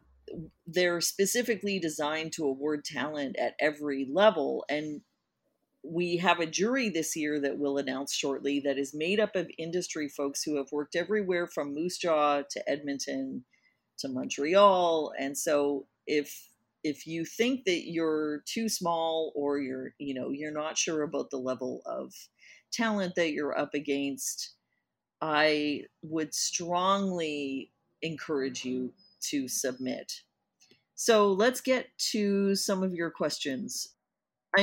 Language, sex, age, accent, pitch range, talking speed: English, female, 40-59, American, 145-200 Hz, 140 wpm